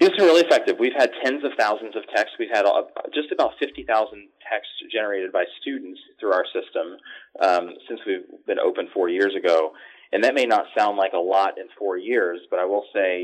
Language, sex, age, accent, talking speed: English, male, 30-49, American, 215 wpm